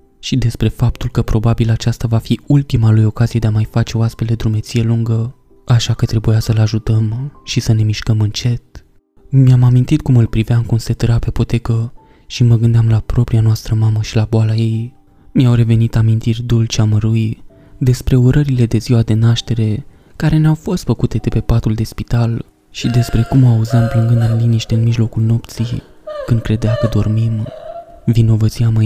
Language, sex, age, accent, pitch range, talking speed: Romanian, male, 20-39, native, 110-120 Hz, 180 wpm